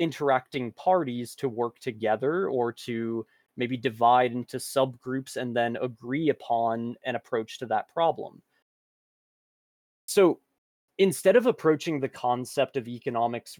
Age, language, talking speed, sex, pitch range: 20-39, English, 125 wpm, male, 120-155 Hz